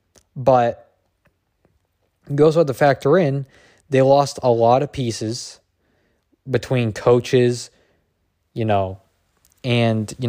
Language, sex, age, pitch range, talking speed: English, male, 20-39, 115-145 Hz, 105 wpm